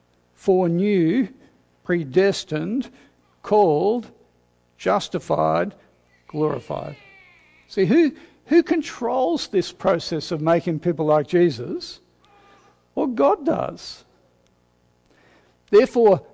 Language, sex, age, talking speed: English, male, 60-79, 75 wpm